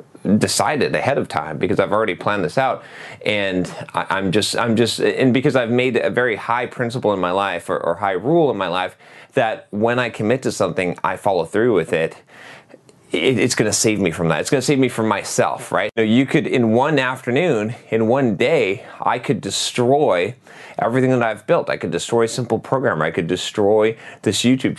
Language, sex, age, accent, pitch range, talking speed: English, male, 30-49, American, 105-130 Hz, 205 wpm